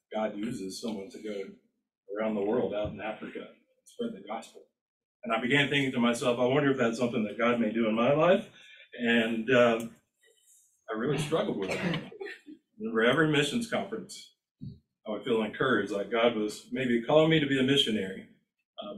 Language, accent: English, American